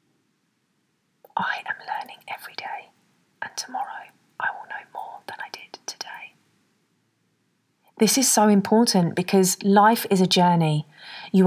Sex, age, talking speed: female, 30-49, 130 wpm